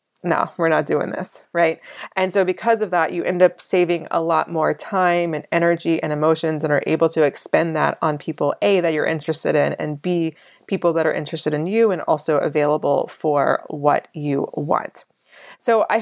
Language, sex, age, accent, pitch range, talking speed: English, female, 20-39, American, 160-185 Hz, 200 wpm